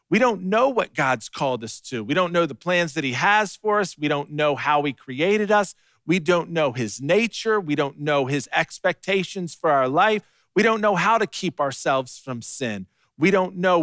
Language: English